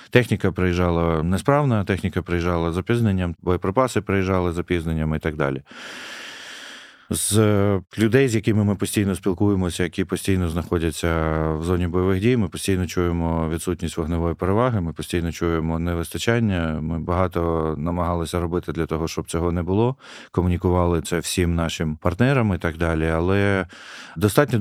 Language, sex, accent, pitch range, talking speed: Ukrainian, male, native, 85-100 Hz, 140 wpm